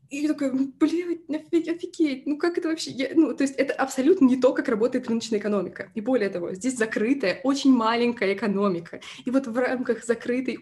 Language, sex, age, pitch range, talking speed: Russian, female, 20-39, 205-260 Hz, 200 wpm